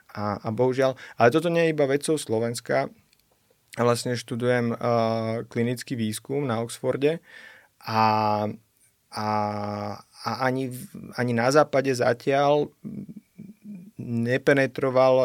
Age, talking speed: 30-49, 100 wpm